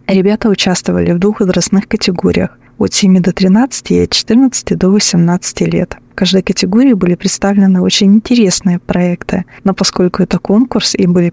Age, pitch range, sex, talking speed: 20-39, 175-205 Hz, female, 160 wpm